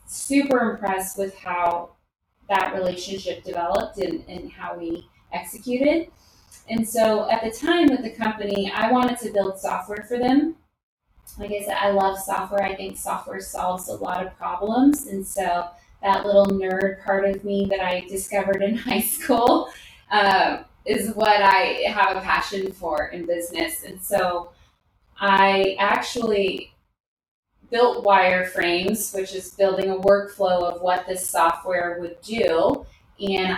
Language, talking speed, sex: English, 150 wpm, female